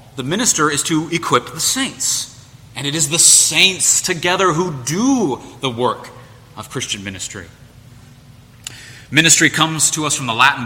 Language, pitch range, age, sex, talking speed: English, 115-140 Hz, 30-49, male, 150 wpm